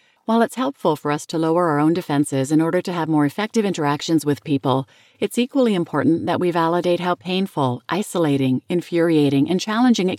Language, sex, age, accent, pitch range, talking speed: English, female, 40-59, American, 150-200 Hz, 190 wpm